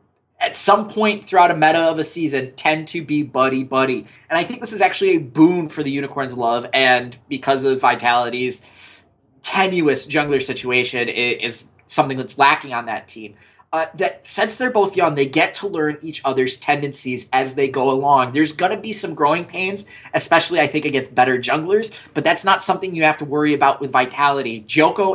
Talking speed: 195 wpm